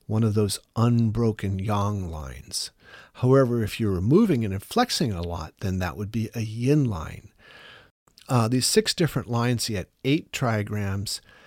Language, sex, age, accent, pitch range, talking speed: English, male, 50-69, American, 105-135 Hz, 160 wpm